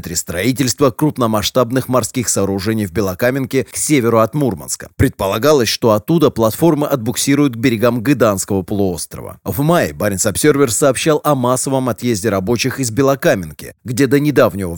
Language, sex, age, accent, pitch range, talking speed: Russian, male, 30-49, native, 110-140 Hz, 130 wpm